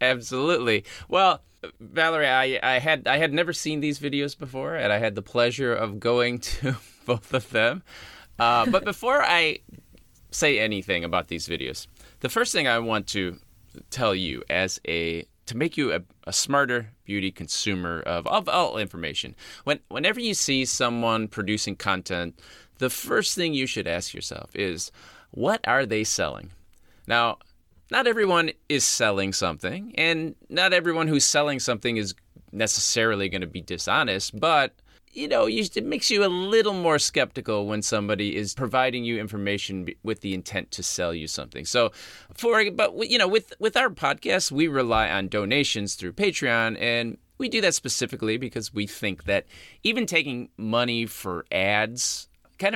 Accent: American